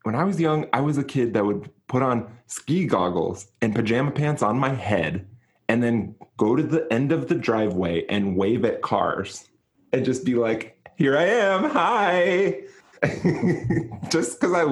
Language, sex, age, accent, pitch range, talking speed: English, male, 20-39, American, 100-125 Hz, 180 wpm